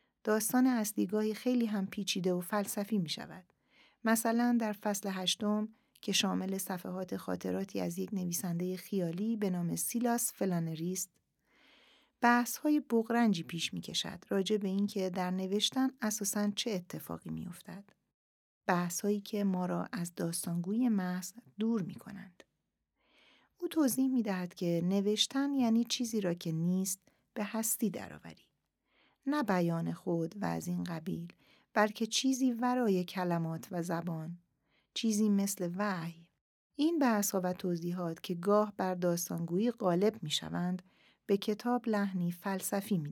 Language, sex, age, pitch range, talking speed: Persian, female, 40-59, 180-220 Hz, 135 wpm